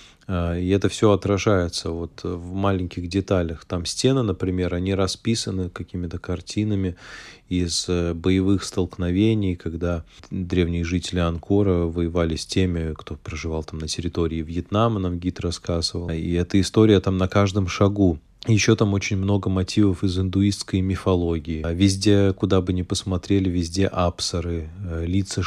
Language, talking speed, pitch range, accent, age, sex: Russian, 135 wpm, 90-100 Hz, native, 20-39, male